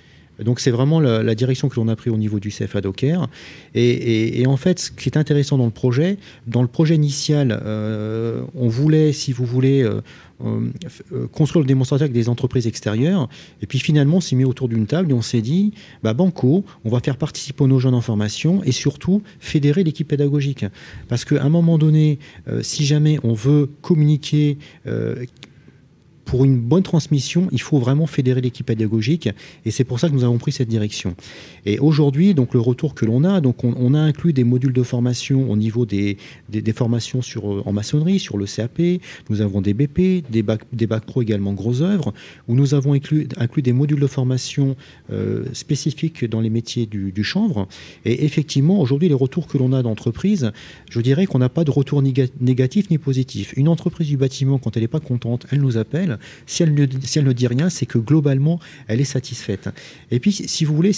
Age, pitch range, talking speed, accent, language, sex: 40-59, 115-150 Hz, 210 wpm, French, French, male